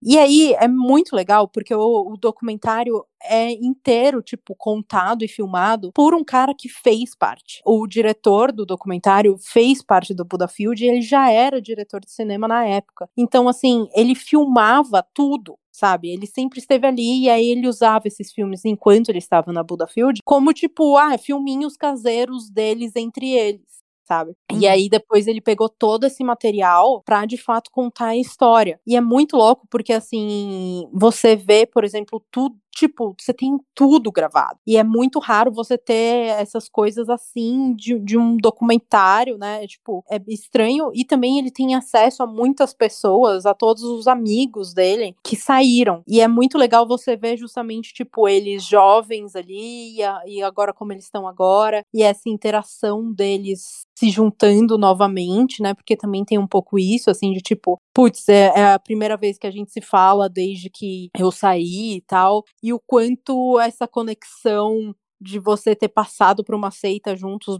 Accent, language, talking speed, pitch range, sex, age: Brazilian, Portuguese, 170 wpm, 200-245 Hz, female, 20-39